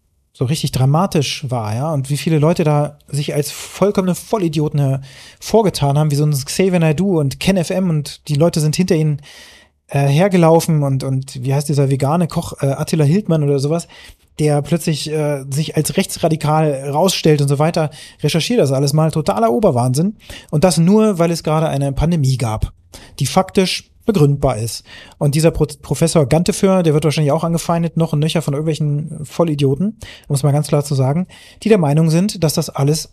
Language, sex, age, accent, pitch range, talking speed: German, male, 30-49, German, 140-170 Hz, 190 wpm